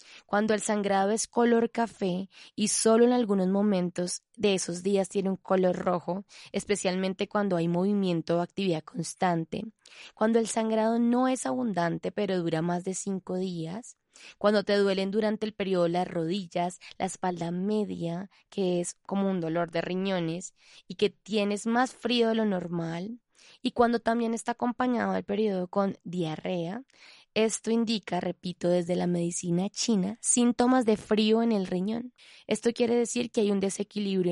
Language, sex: Spanish, female